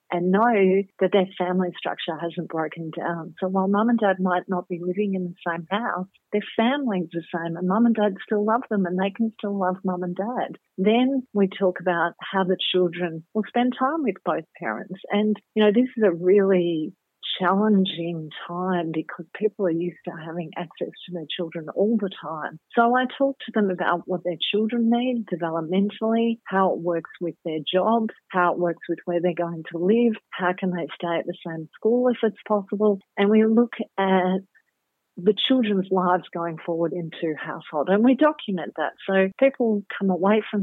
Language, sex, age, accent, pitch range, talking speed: English, female, 50-69, Australian, 175-215 Hz, 195 wpm